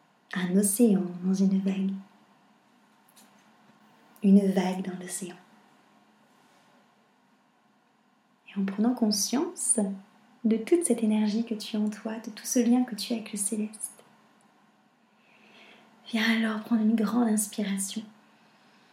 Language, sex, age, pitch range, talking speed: French, female, 30-49, 185-230 Hz, 120 wpm